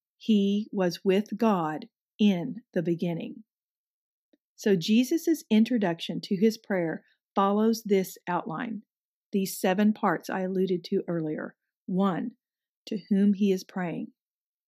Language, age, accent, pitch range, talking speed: English, 40-59, American, 185-225 Hz, 120 wpm